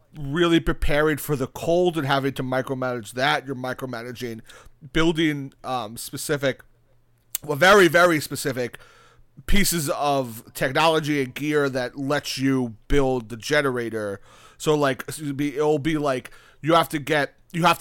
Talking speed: 140 wpm